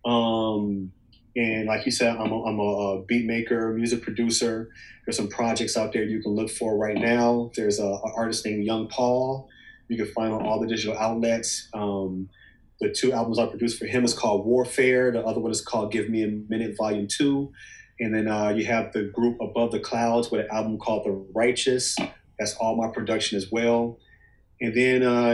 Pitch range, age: 105-115 Hz, 30-49